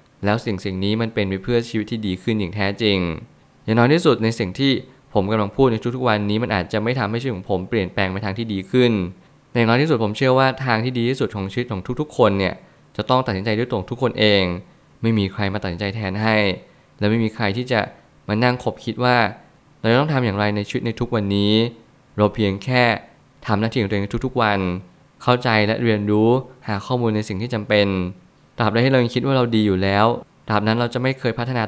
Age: 20-39